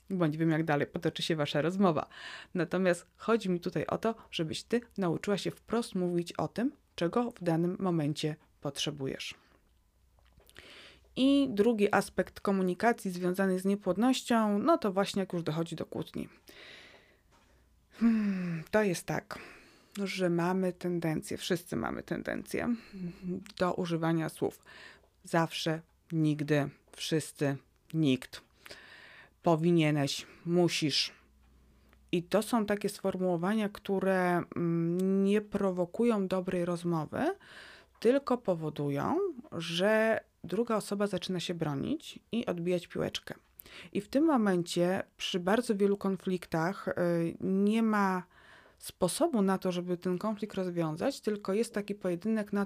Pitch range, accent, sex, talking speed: 165-205 Hz, native, female, 115 wpm